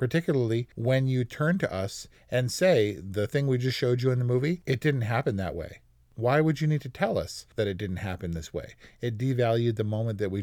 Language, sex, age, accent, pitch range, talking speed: English, male, 40-59, American, 95-125 Hz, 235 wpm